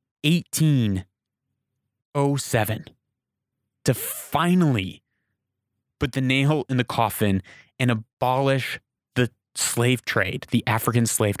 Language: English